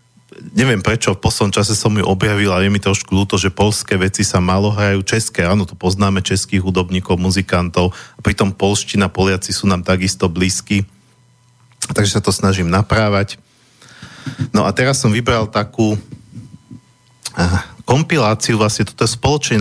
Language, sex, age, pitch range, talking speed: Slovak, male, 40-59, 95-115 Hz, 150 wpm